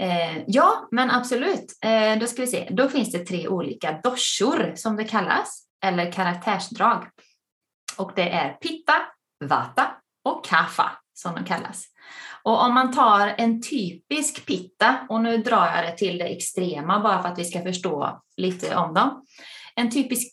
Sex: female